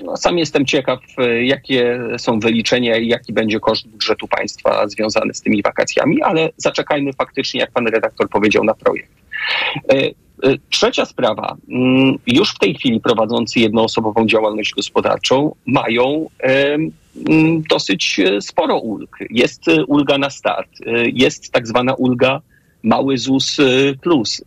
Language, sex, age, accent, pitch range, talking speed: Polish, male, 40-59, native, 115-140 Hz, 125 wpm